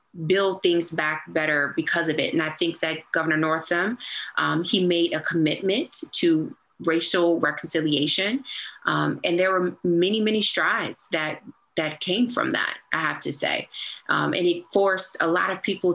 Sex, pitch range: female, 160-185 Hz